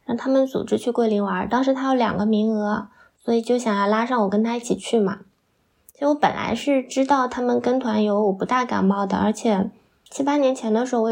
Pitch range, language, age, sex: 205-255 Hz, Chinese, 20-39, female